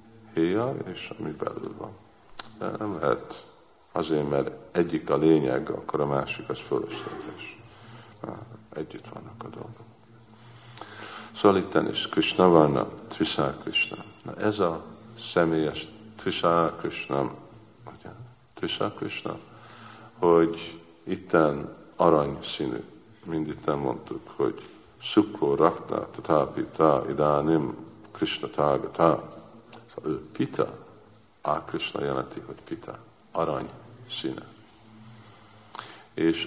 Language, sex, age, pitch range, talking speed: Hungarian, male, 50-69, 80-110 Hz, 90 wpm